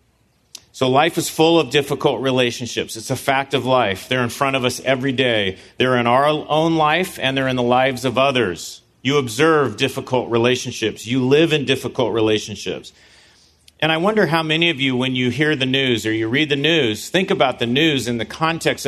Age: 40-59